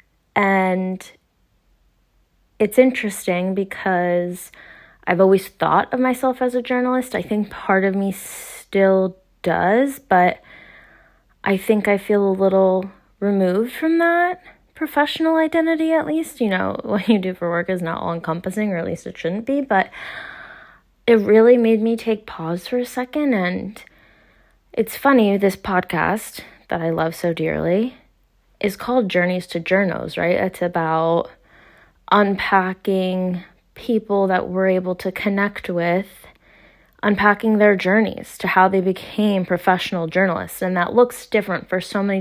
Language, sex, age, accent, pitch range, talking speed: English, female, 20-39, American, 180-225 Hz, 145 wpm